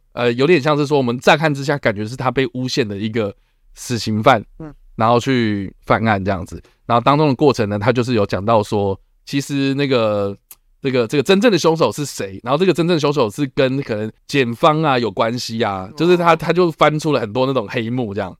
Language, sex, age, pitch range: Chinese, male, 20-39, 125-175 Hz